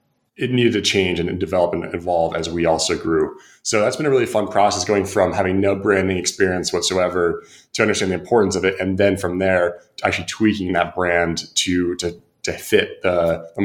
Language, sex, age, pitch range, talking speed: English, male, 20-39, 85-100 Hz, 205 wpm